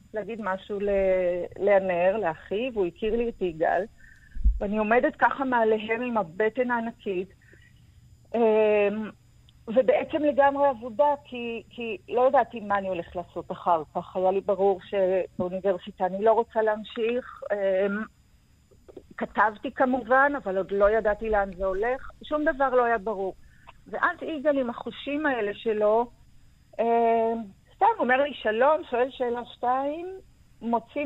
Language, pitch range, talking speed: Hebrew, 205-265 Hz, 125 wpm